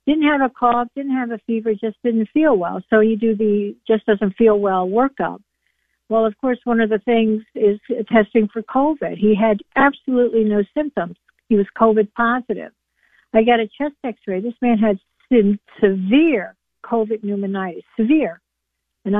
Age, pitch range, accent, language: 60-79, 205-255 Hz, American, English